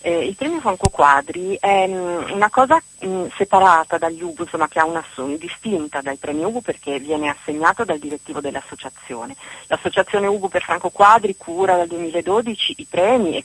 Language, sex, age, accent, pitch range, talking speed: Italian, female, 30-49, native, 150-195 Hz, 170 wpm